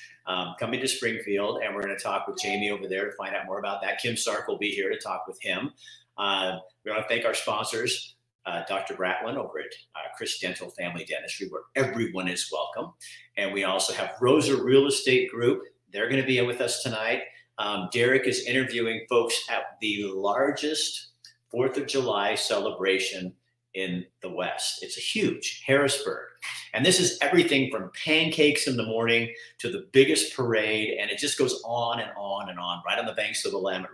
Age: 50-69